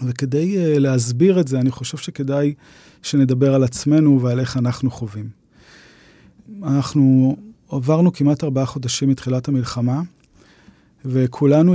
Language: Hebrew